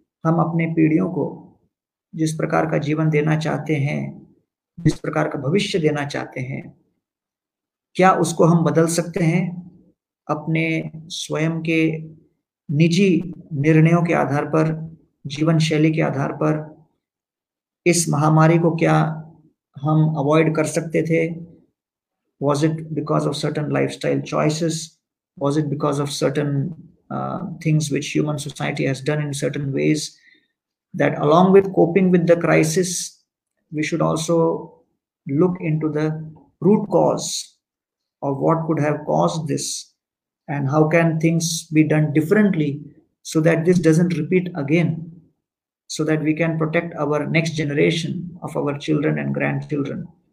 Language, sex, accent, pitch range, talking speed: Hindi, male, native, 150-165 Hz, 140 wpm